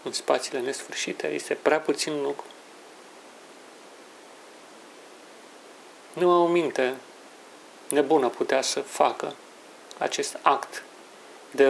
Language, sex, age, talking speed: Romanian, male, 40-59, 85 wpm